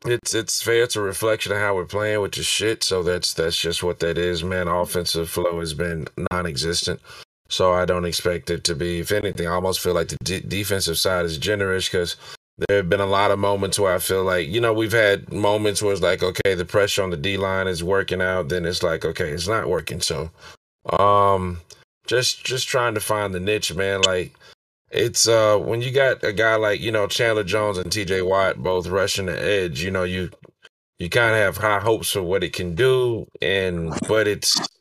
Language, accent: English, American